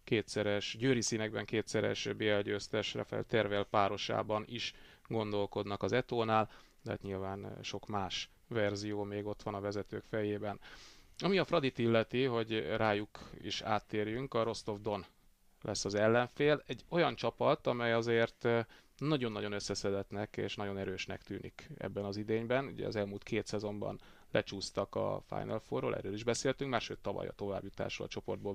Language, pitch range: Hungarian, 100-115 Hz